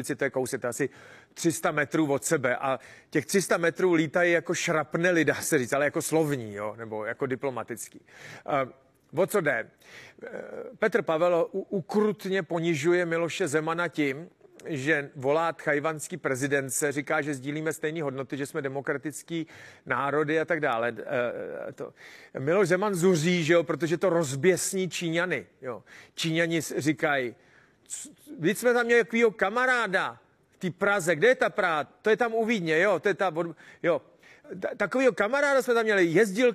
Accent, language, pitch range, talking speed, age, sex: native, Czech, 155-205 Hz, 155 wpm, 40-59, male